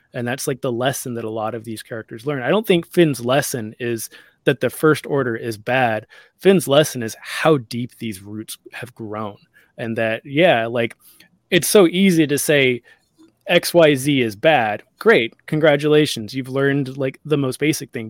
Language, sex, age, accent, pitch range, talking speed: English, male, 20-39, American, 115-145 Hz, 185 wpm